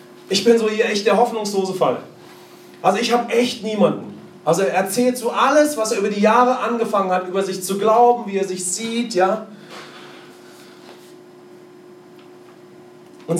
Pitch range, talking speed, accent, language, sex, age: 175-215 Hz, 155 wpm, German, English, male, 40-59